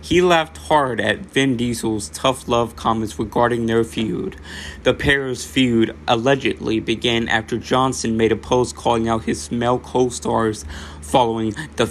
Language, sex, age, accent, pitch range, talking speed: English, male, 20-39, American, 80-125 Hz, 145 wpm